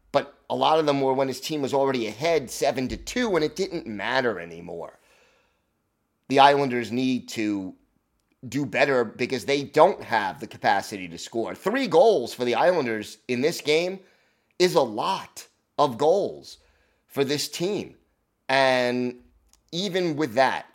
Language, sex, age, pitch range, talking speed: English, male, 30-49, 105-135 Hz, 155 wpm